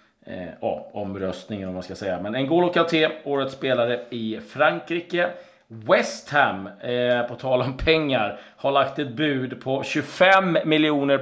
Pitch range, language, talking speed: 110-140 Hz, Swedish, 160 wpm